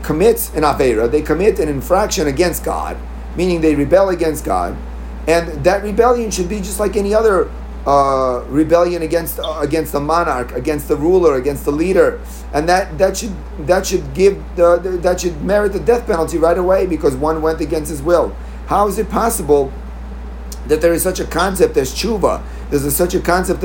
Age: 40-59